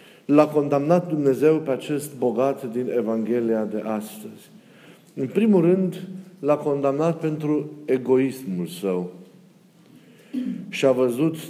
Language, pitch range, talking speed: Romanian, 125-175 Hz, 110 wpm